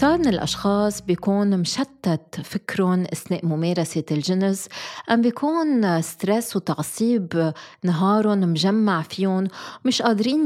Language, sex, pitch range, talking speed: Arabic, female, 170-215 Hz, 105 wpm